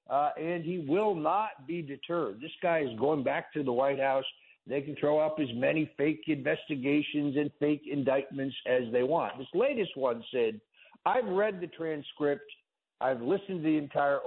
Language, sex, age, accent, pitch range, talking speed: English, male, 60-79, American, 130-175 Hz, 180 wpm